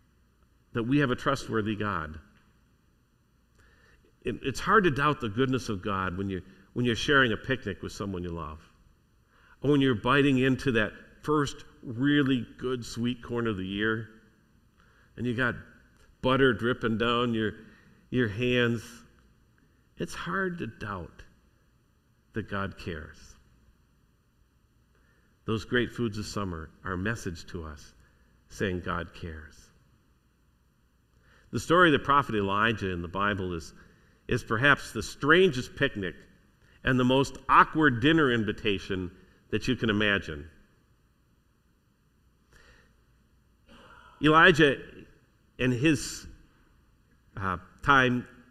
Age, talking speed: 50-69, 120 wpm